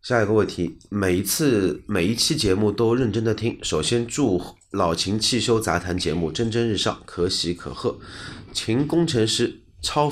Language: Chinese